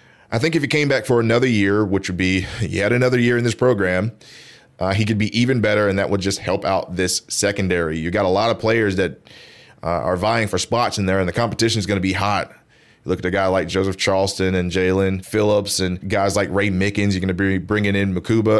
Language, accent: English, American